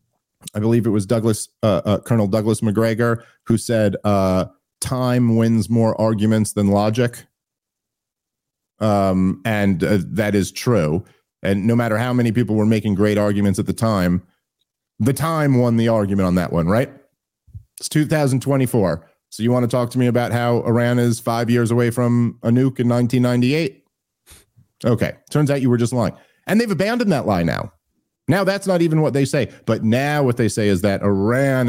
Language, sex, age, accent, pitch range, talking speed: English, male, 40-59, American, 105-135 Hz, 180 wpm